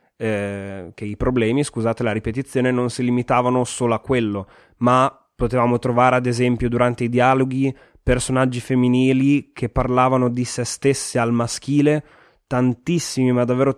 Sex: male